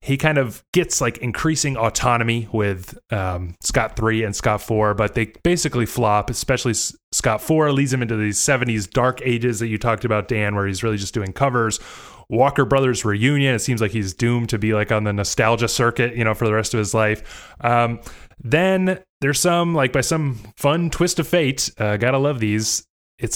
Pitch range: 105-135 Hz